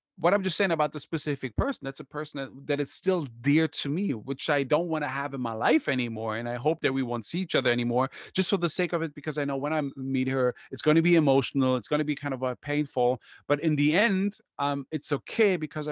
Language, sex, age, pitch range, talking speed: English, male, 30-49, 130-155 Hz, 275 wpm